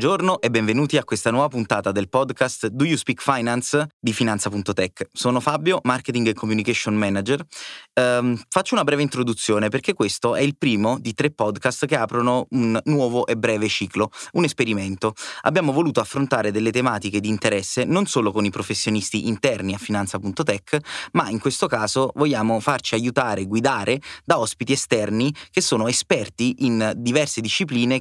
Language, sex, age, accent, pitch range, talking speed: Italian, male, 20-39, native, 110-135 Hz, 165 wpm